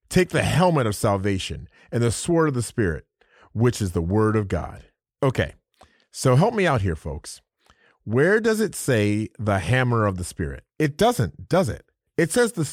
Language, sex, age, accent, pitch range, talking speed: English, male, 30-49, American, 100-150 Hz, 190 wpm